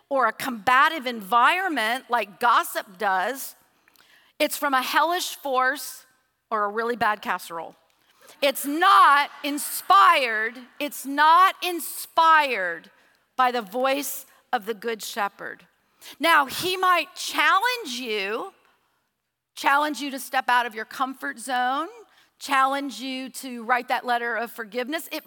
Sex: female